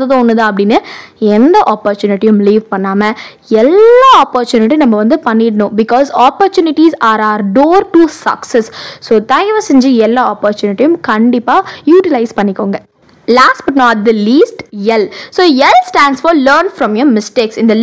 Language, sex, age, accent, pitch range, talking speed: Tamil, female, 20-39, native, 220-335 Hz, 70 wpm